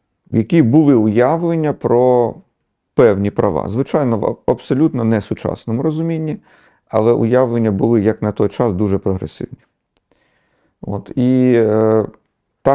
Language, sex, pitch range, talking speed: Ukrainian, male, 105-130 Hz, 120 wpm